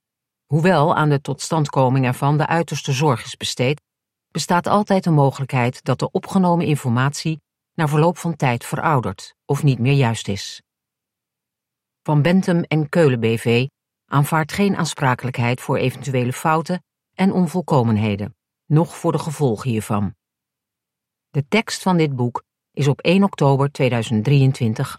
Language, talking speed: Dutch, 135 wpm